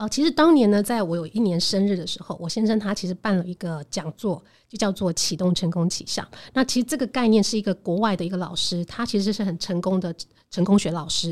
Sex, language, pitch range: female, Chinese, 180-230 Hz